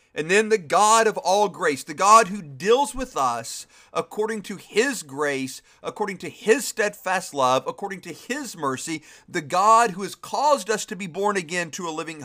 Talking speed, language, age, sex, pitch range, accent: 190 wpm, English, 50-69, male, 180-240 Hz, American